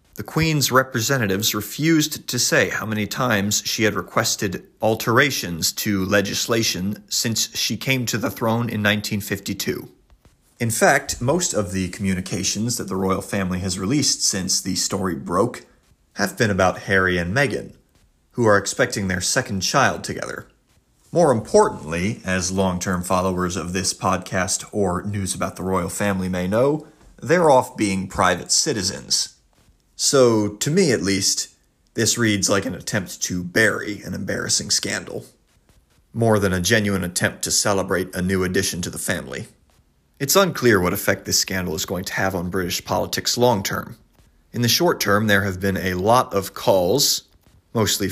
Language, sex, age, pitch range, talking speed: English, male, 30-49, 95-115 Hz, 160 wpm